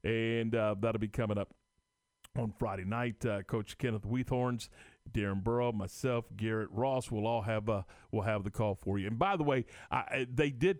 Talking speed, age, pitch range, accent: 195 wpm, 40-59, 105-130 Hz, American